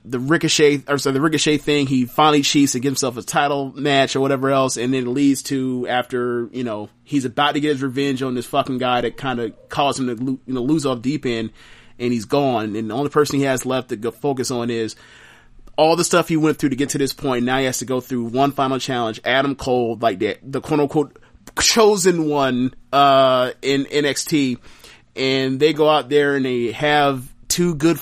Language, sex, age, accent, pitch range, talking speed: English, male, 30-49, American, 120-145 Hz, 225 wpm